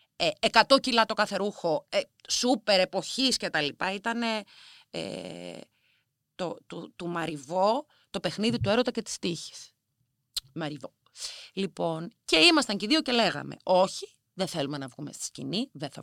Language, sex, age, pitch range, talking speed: Greek, female, 30-49, 160-240 Hz, 145 wpm